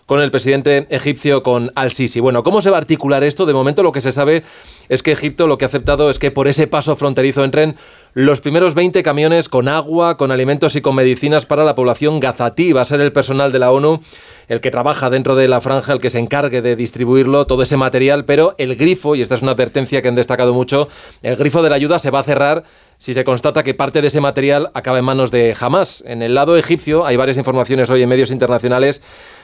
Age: 30-49